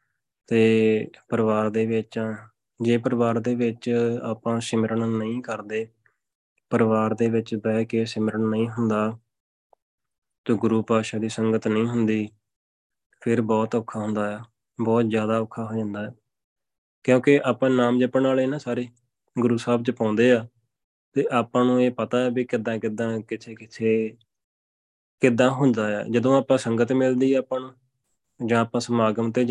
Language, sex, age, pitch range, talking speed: Punjabi, male, 20-39, 110-120 Hz, 100 wpm